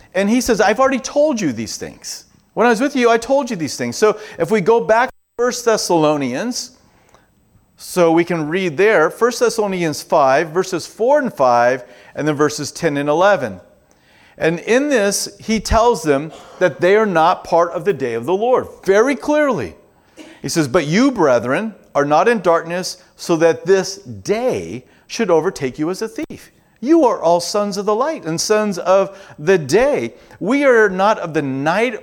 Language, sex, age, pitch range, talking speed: English, male, 40-59, 145-220 Hz, 190 wpm